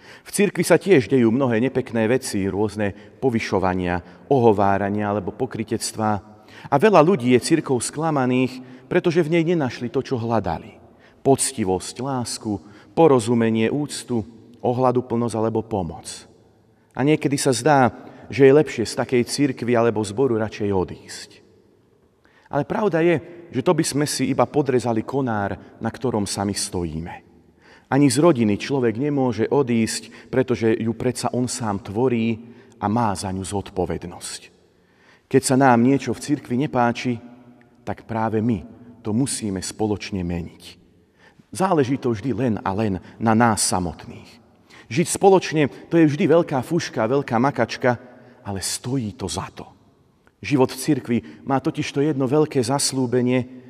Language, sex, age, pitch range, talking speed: Slovak, male, 40-59, 110-135 Hz, 140 wpm